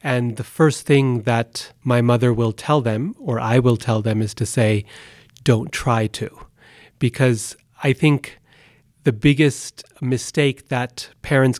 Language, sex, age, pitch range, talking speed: English, male, 30-49, 120-140 Hz, 150 wpm